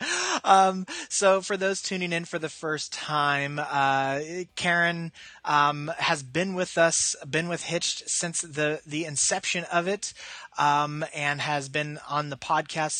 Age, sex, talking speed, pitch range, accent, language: 20-39, male, 150 wpm, 140-165 Hz, American, English